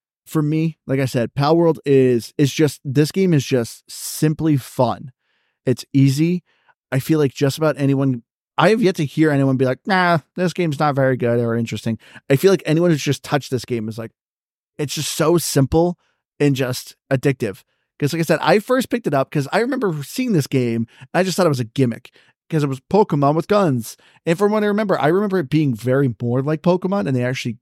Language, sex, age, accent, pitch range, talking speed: English, male, 20-39, American, 130-155 Hz, 225 wpm